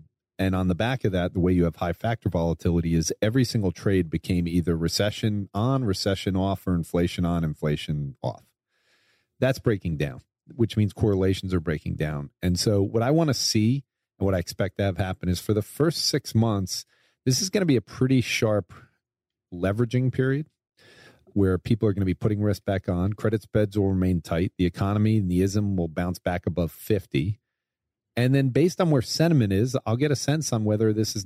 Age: 40-59